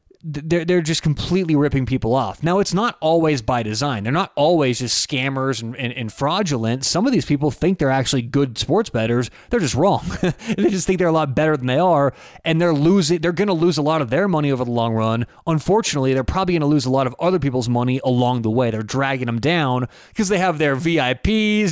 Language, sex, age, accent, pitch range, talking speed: English, male, 30-49, American, 130-170 Hz, 230 wpm